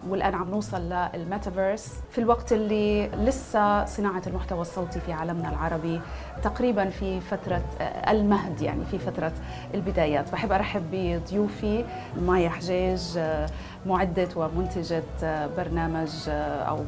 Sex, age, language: female, 30-49, Arabic